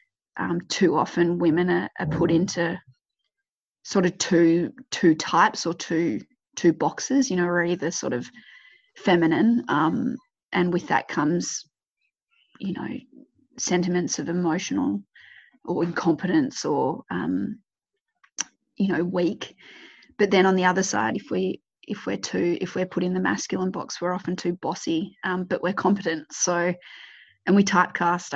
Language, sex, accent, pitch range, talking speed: English, female, Australian, 170-195 Hz, 150 wpm